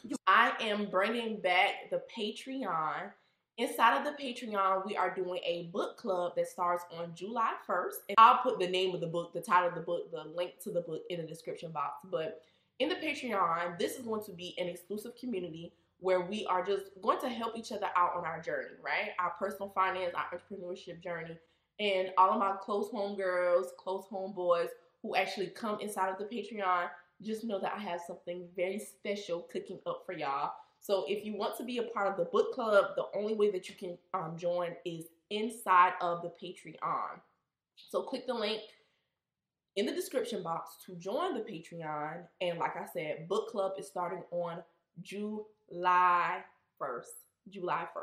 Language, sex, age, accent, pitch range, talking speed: English, female, 20-39, American, 175-215 Hz, 190 wpm